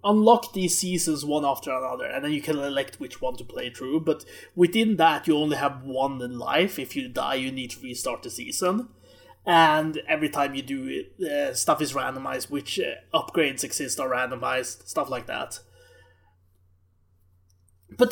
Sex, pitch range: male, 140-200 Hz